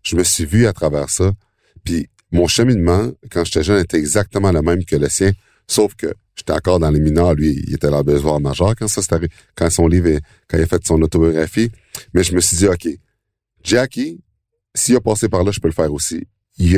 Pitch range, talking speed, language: 85-105 Hz, 235 wpm, French